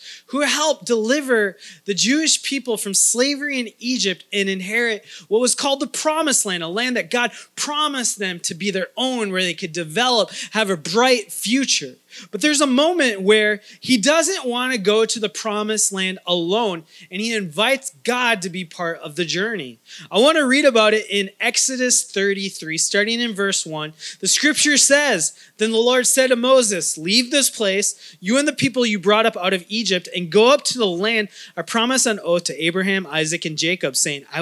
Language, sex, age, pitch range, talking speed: English, male, 20-39, 190-255 Hz, 195 wpm